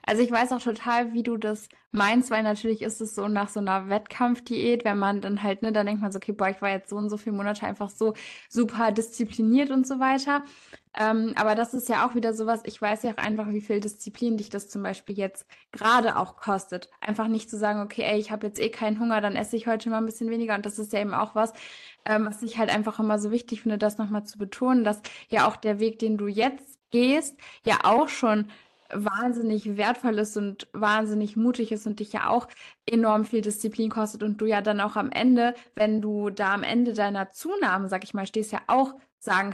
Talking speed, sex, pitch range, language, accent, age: 235 wpm, female, 205-235 Hz, German, German, 20-39